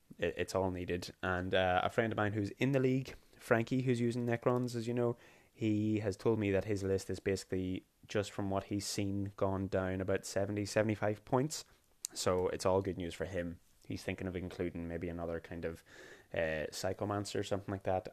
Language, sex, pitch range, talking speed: English, male, 90-110 Hz, 200 wpm